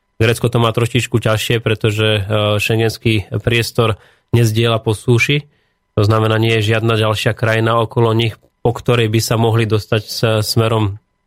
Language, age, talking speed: Slovak, 20-39, 145 wpm